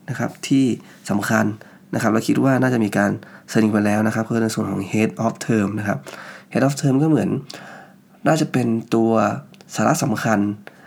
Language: Thai